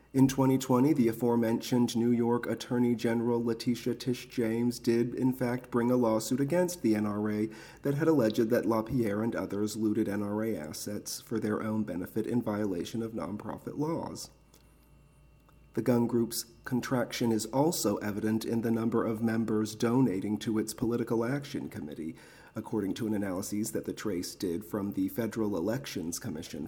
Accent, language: American, English